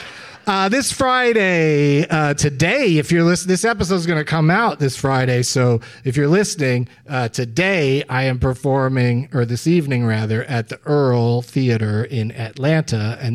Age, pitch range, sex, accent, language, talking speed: 40-59, 120-175 Hz, male, American, English, 165 wpm